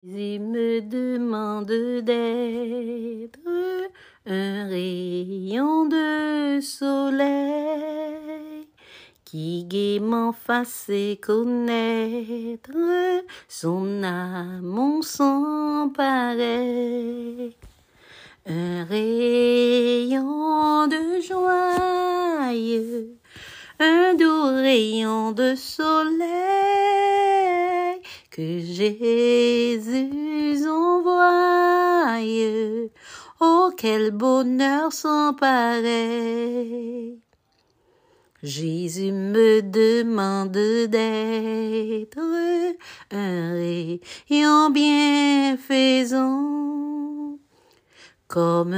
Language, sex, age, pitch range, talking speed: French, female, 40-59, 220-300 Hz, 50 wpm